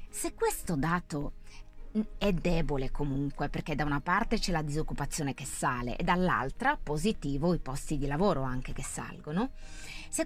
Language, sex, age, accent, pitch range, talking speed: Italian, female, 30-49, native, 135-195 Hz, 150 wpm